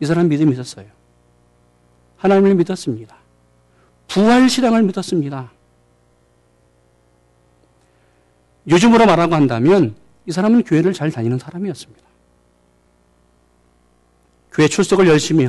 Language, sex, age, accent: Korean, male, 40-59, native